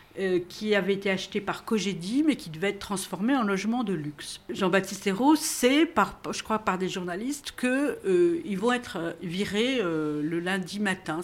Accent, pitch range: French, 180-240 Hz